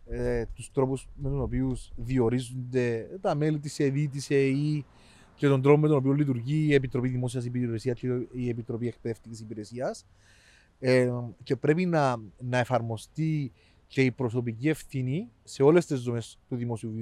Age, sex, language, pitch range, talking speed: 30-49, male, Greek, 110-150 Hz, 150 wpm